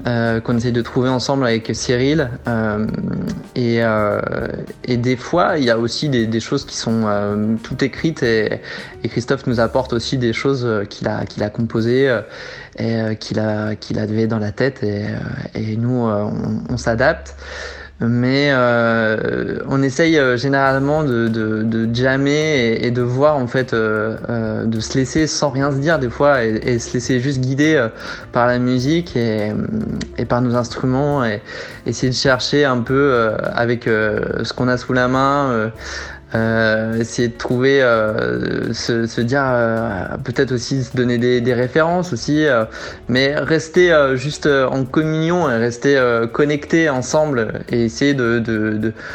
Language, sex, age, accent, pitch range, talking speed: French, male, 20-39, French, 115-135 Hz, 180 wpm